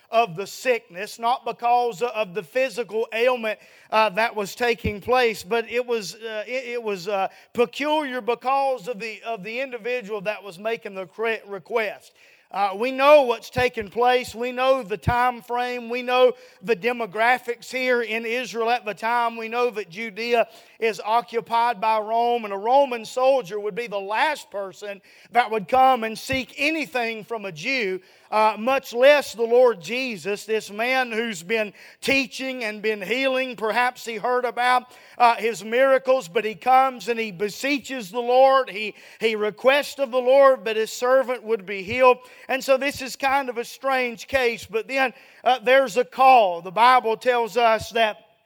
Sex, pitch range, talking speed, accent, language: male, 220-255 Hz, 175 wpm, American, English